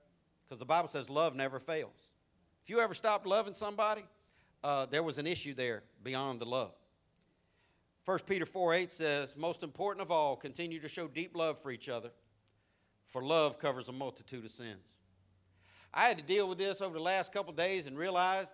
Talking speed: 190 wpm